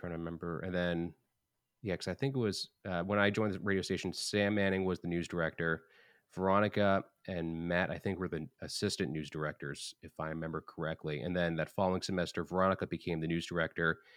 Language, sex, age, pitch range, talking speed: English, male, 30-49, 80-95 Hz, 205 wpm